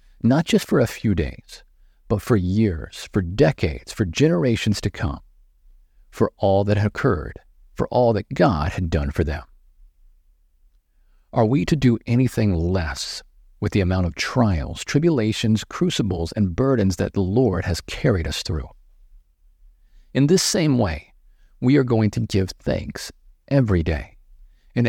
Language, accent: English, American